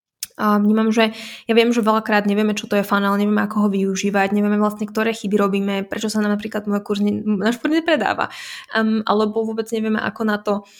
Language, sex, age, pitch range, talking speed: Slovak, female, 20-39, 200-230 Hz, 210 wpm